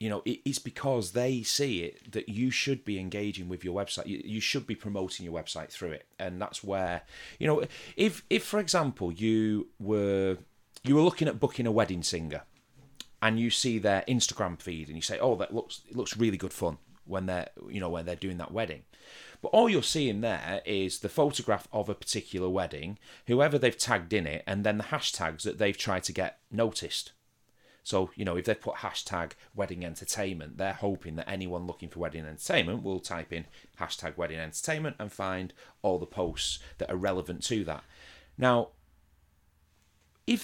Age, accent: 30-49, British